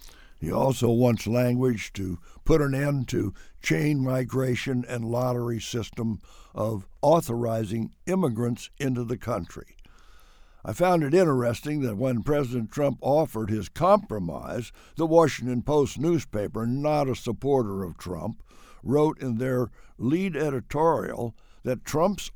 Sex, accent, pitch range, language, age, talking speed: male, American, 105-140 Hz, English, 60-79, 125 wpm